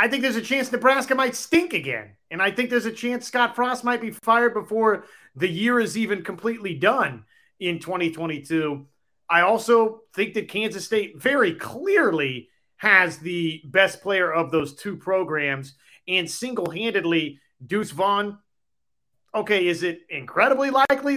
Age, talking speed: 30-49, 155 wpm